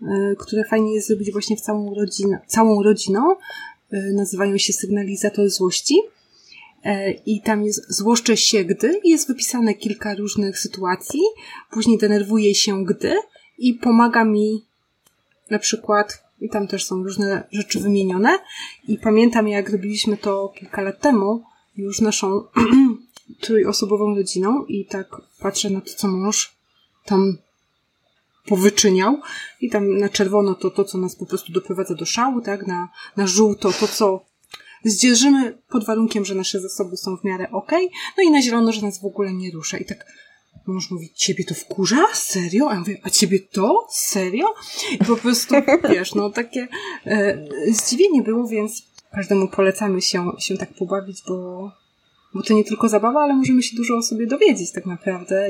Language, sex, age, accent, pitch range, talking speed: Polish, female, 20-39, native, 195-235 Hz, 160 wpm